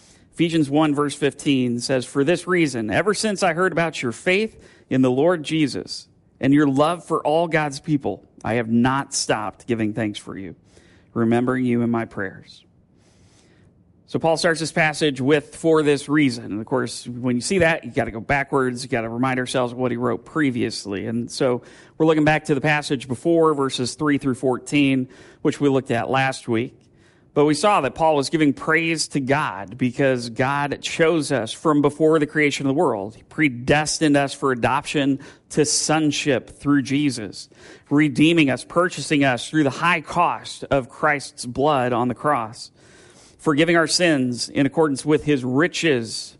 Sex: male